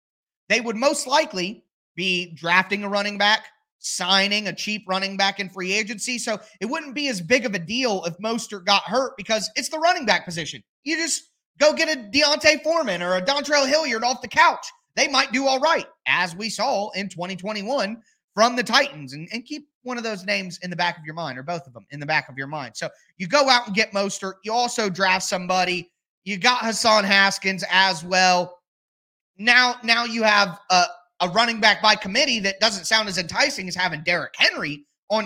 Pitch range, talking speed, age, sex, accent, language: 185-245 Hz, 210 wpm, 30-49, male, American, English